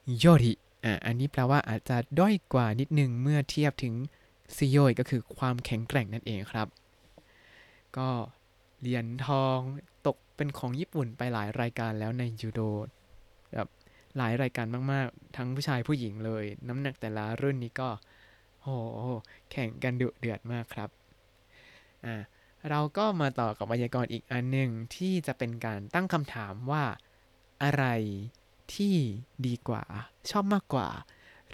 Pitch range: 110-145 Hz